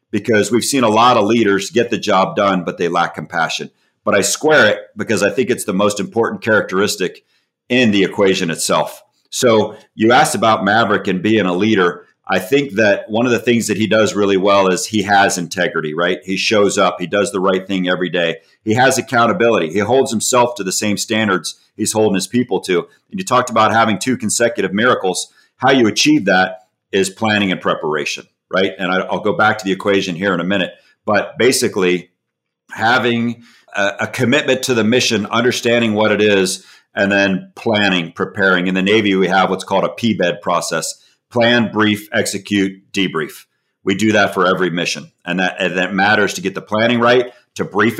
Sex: male